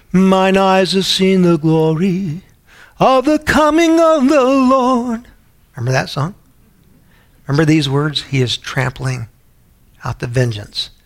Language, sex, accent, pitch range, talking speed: English, male, American, 120-150 Hz, 130 wpm